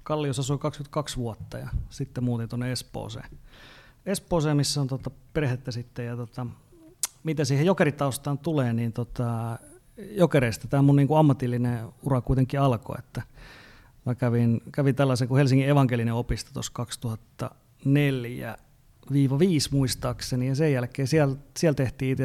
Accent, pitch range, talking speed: native, 115-140 Hz, 130 wpm